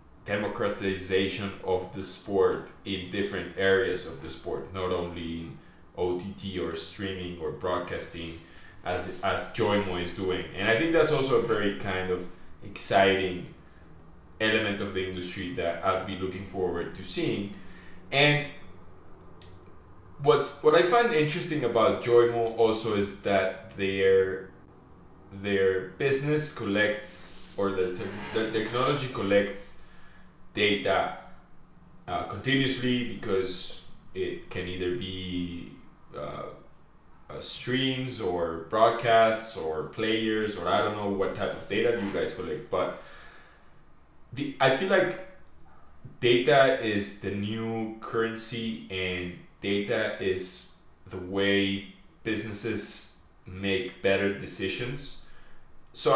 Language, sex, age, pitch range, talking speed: English, male, 20-39, 90-110 Hz, 120 wpm